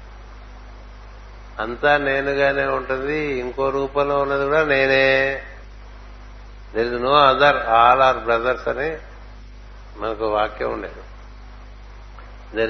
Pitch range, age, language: 110-130 Hz, 60-79, Telugu